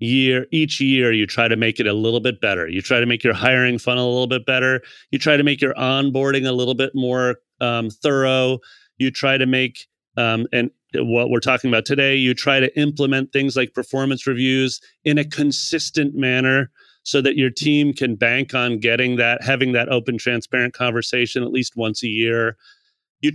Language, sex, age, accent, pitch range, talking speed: English, male, 30-49, American, 120-145 Hz, 200 wpm